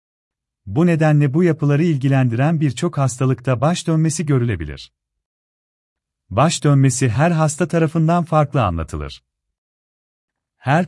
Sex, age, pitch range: male, 40-59, 95-150 Hz